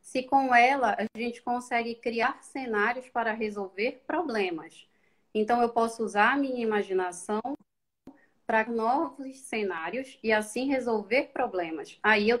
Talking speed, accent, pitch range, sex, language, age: 130 wpm, Brazilian, 210-265 Hz, female, Portuguese, 20-39